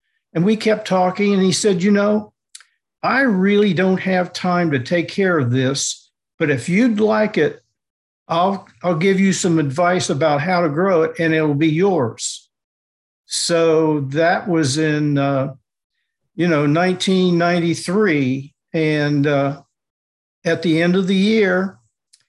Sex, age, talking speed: male, 50-69, 150 wpm